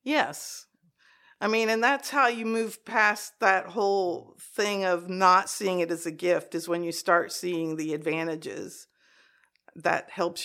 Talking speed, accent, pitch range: 160 wpm, American, 170-210 Hz